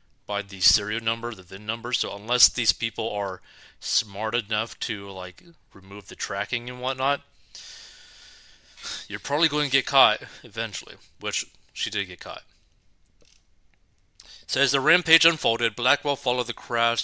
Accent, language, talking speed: American, English, 150 wpm